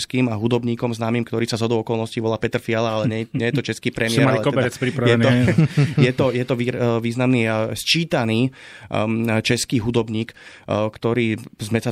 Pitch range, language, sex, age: 110-125 Hz, Slovak, male, 30-49